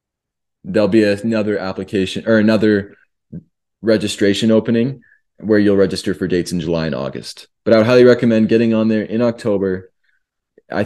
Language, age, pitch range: English, 20-39, 95-115 Hz